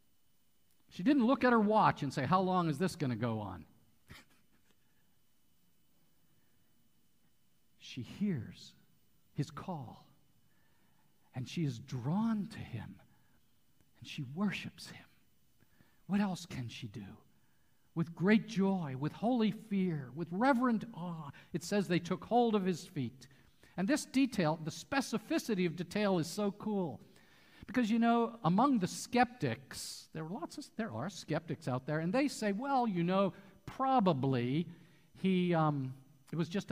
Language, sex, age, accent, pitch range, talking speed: English, male, 50-69, American, 140-205 Hz, 145 wpm